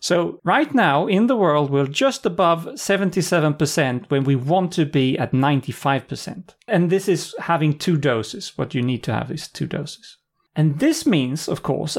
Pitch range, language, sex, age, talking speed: 135-195 Hz, English, male, 40-59, 180 wpm